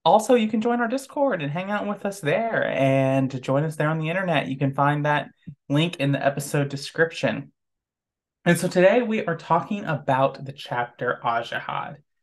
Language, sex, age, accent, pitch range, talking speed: English, male, 20-39, American, 130-165 Hz, 190 wpm